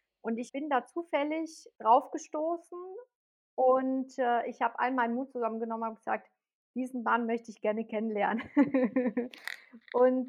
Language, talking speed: German, 135 wpm